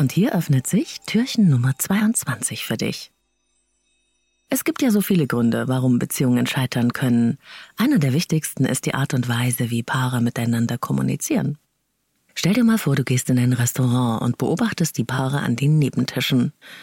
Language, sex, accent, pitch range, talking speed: German, female, German, 125-165 Hz, 170 wpm